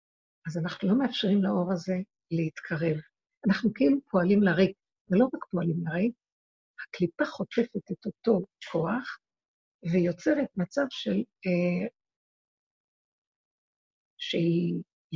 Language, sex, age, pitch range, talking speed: Hebrew, female, 60-79, 175-225 Hz, 105 wpm